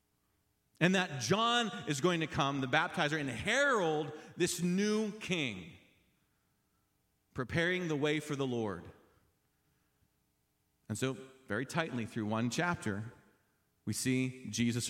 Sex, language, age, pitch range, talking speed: male, English, 40-59, 130-195 Hz, 120 wpm